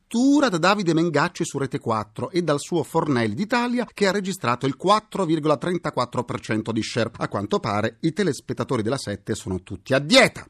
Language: Italian